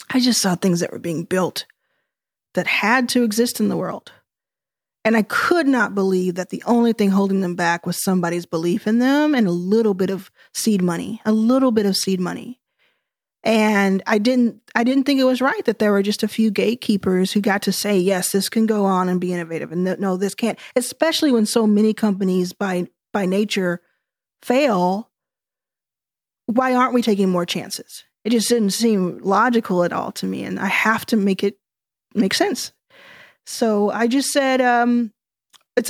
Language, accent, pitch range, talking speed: English, American, 195-255 Hz, 190 wpm